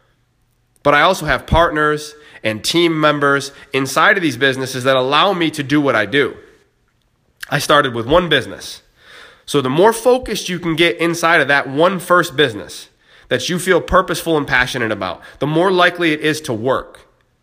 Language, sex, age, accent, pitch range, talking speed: English, male, 30-49, American, 130-165 Hz, 180 wpm